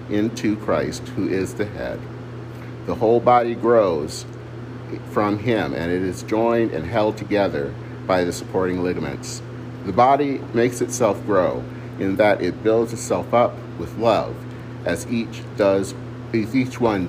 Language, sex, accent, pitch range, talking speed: English, male, American, 115-125 Hz, 150 wpm